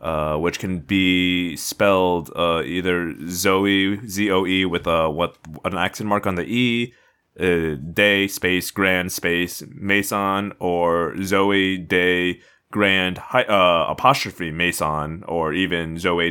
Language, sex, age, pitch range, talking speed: English, male, 30-49, 85-100 Hz, 130 wpm